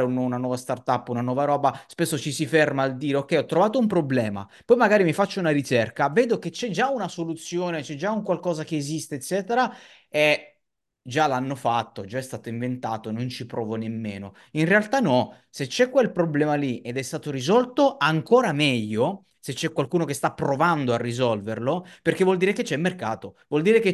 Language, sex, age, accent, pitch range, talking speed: Italian, male, 30-49, native, 115-175 Hz, 200 wpm